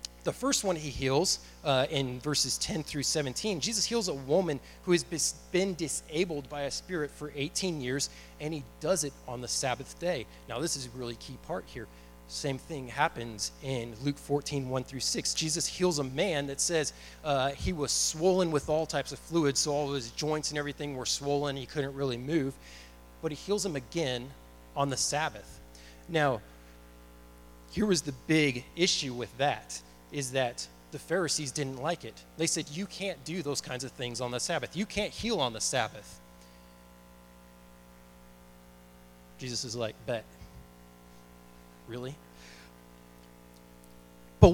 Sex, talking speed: male, 170 wpm